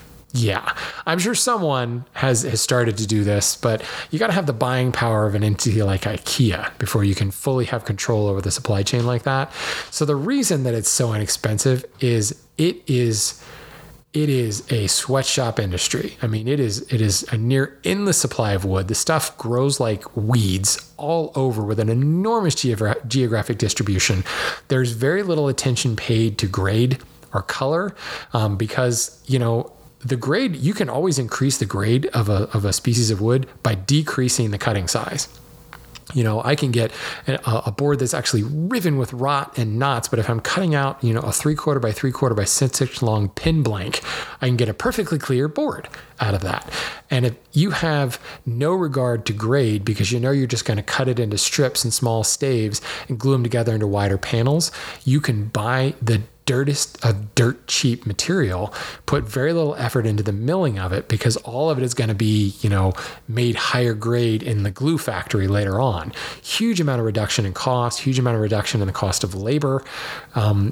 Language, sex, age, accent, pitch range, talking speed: English, male, 20-39, American, 110-135 Hz, 195 wpm